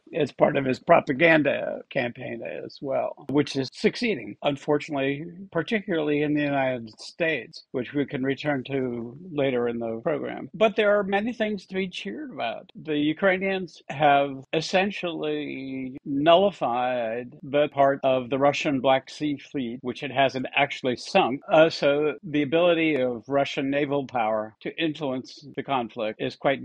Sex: male